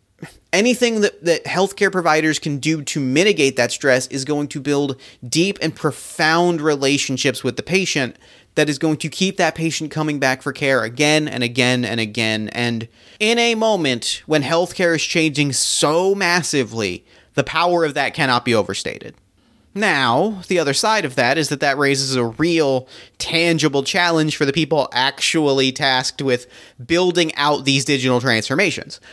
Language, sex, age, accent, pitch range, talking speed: English, male, 30-49, American, 135-170 Hz, 165 wpm